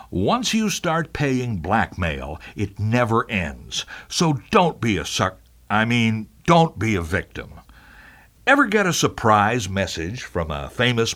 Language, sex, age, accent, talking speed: English, male, 60-79, American, 145 wpm